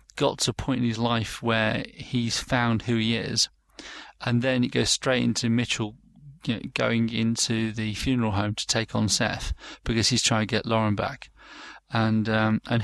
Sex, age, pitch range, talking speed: male, 40-59, 110-125 Hz, 190 wpm